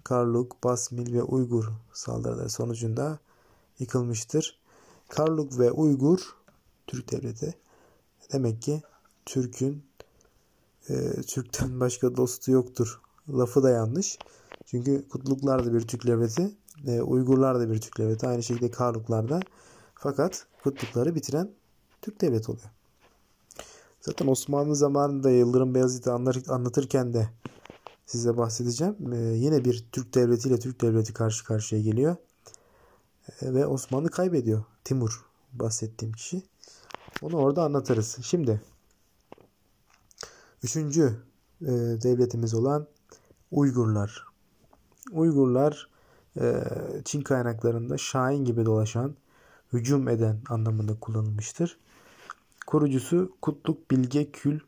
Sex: male